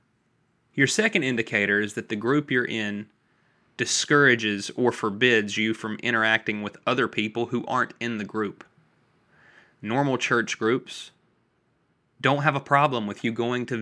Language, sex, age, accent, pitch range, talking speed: English, male, 20-39, American, 110-125 Hz, 150 wpm